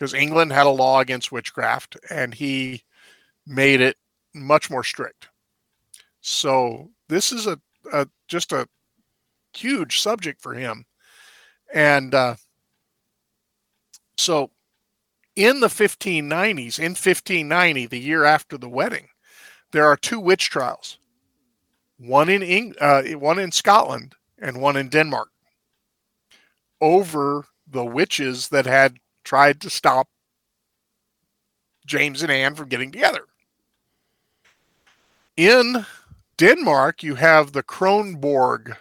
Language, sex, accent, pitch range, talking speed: English, male, American, 130-170 Hz, 120 wpm